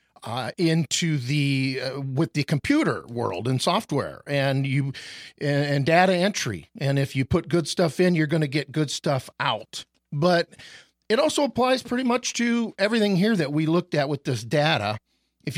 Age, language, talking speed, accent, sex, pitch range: 50-69, English, 180 wpm, American, male, 130-180 Hz